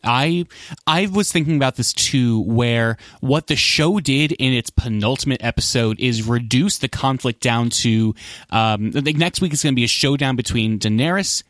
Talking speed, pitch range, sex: 185 wpm, 115-150 Hz, male